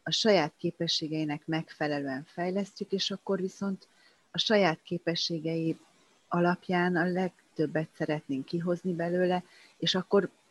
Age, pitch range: 30-49, 155-190 Hz